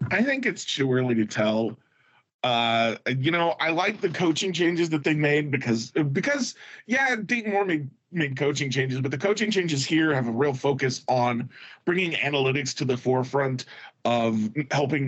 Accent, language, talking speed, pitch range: American, English, 175 wpm, 125-155 Hz